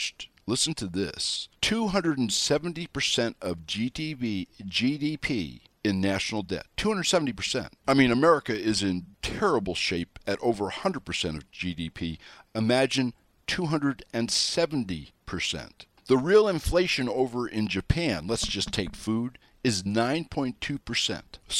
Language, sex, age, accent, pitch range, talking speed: English, male, 60-79, American, 100-135 Hz, 100 wpm